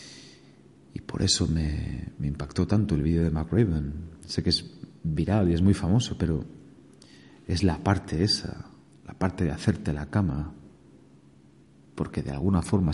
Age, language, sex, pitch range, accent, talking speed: 40-59, Spanish, male, 70-90 Hz, Spanish, 160 wpm